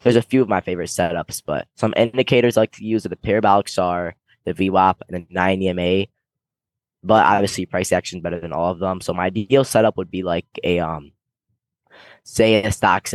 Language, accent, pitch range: English, American, 85-105 Hz